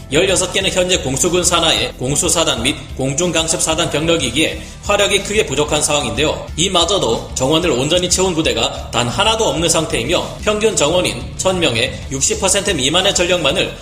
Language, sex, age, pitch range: Korean, male, 30-49, 155-195 Hz